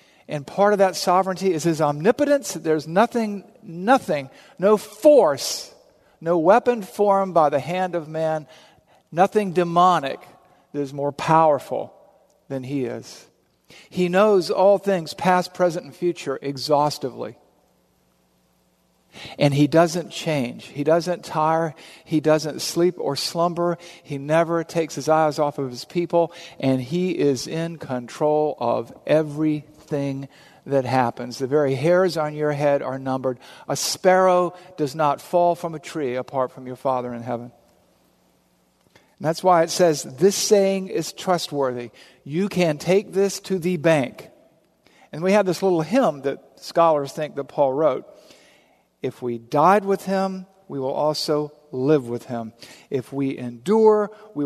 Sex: male